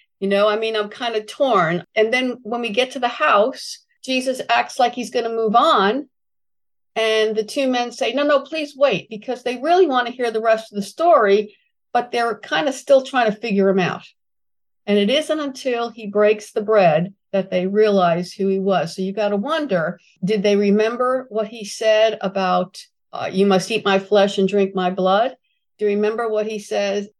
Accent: American